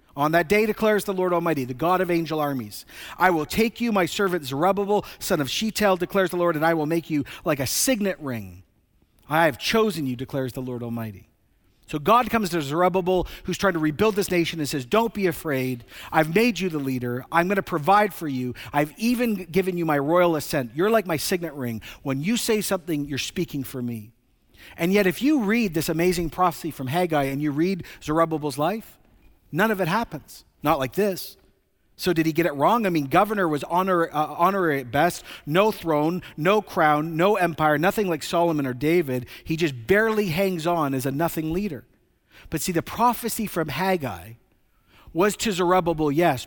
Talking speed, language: 200 wpm, English